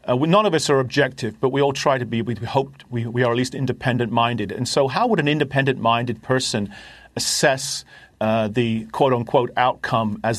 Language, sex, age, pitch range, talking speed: English, male, 40-59, 120-145 Hz, 190 wpm